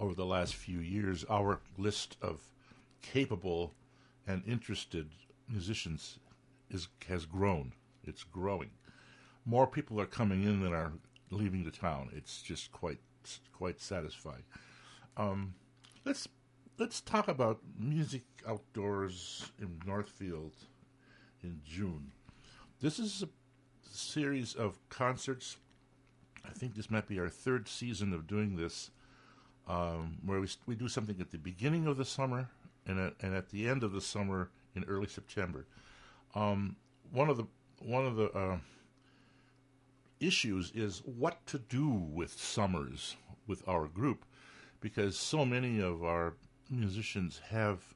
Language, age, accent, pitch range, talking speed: English, 60-79, American, 95-130 Hz, 140 wpm